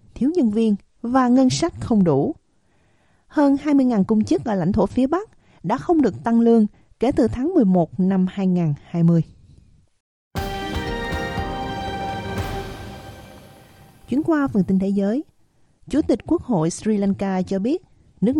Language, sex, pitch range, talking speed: Vietnamese, female, 180-255 Hz, 140 wpm